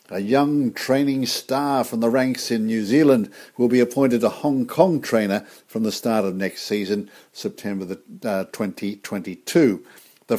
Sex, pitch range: male, 105-135 Hz